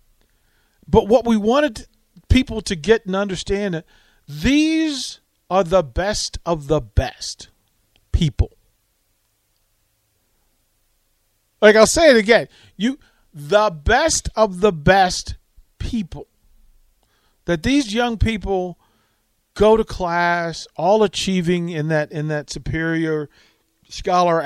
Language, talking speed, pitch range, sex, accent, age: English, 110 wpm, 140-175 Hz, male, American, 50-69